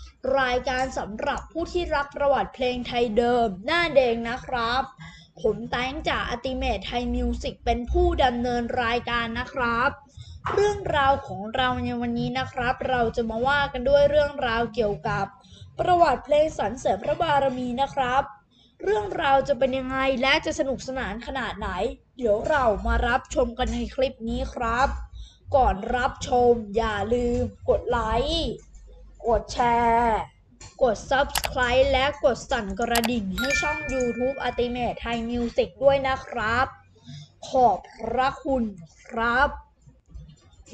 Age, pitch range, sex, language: 20-39, 240-280 Hz, female, Thai